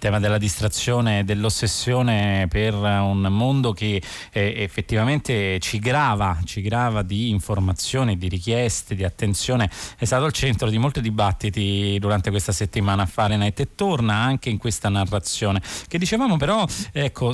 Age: 30-49